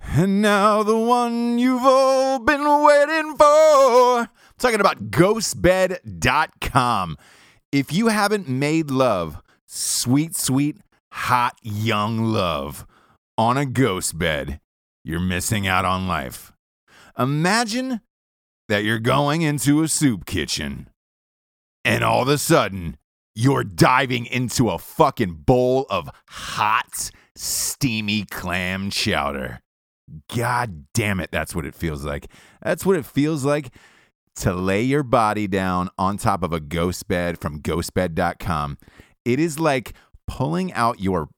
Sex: male